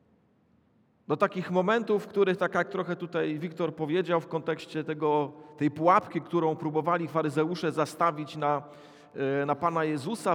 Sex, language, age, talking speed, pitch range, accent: male, Polish, 40-59, 135 wpm, 170-230 Hz, native